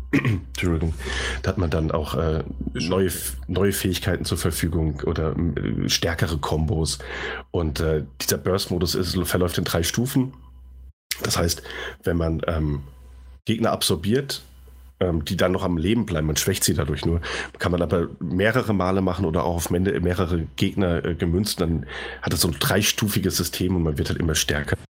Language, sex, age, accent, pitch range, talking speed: German, male, 40-59, German, 80-95 Hz, 165 wpm